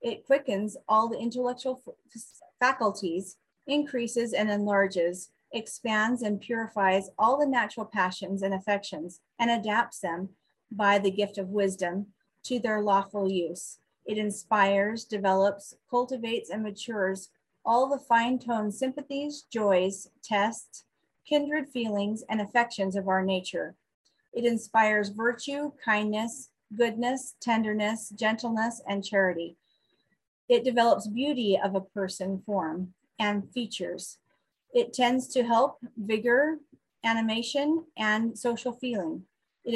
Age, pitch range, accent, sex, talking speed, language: 30-49, 195-245 Hz, American, female, 120 wpm, English